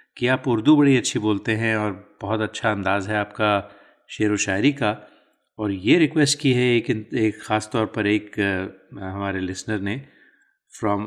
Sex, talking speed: male, 175 wpm